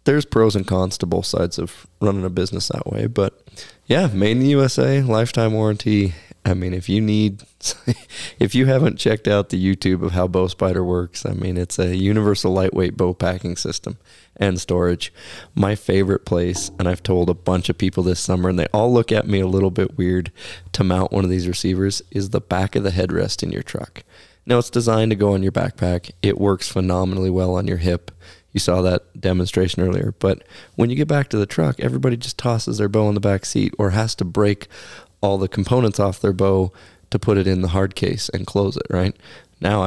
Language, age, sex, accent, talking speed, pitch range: English, 20-39, male, American, 215 wpm, 90-105 Hz